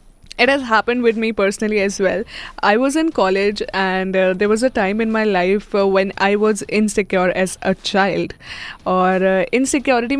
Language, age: Hindi, 20-39